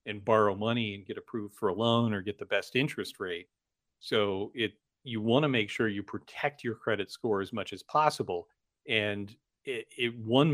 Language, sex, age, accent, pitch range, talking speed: English, male, 40-59, American, 105-120 Hz, 200 wpm